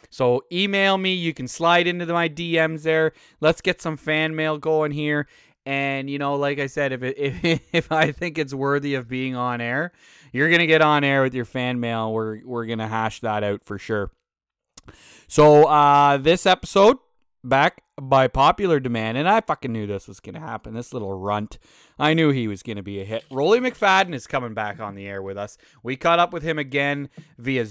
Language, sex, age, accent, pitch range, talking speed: English, male, 30-49, American, 120-160 Hz, 215 wpm